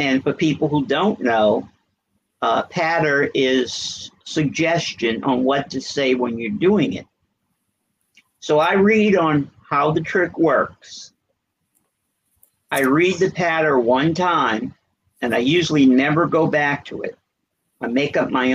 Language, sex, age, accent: English, male, 50-69, American